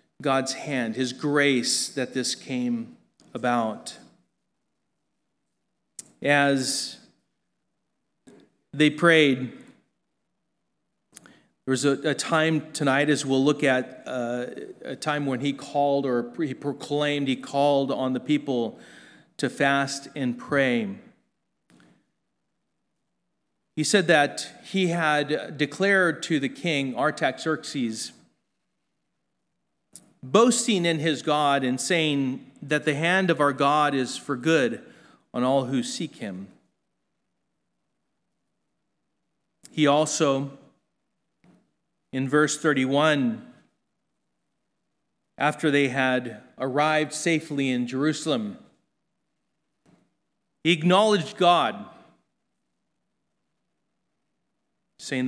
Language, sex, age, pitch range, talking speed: English, male, 40-59, 130-155 Hz, 90 wpm